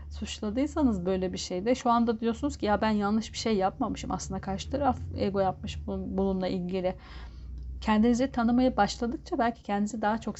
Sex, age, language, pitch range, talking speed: female, 40-59, Turkish, 190-235 Hz, 160 wpm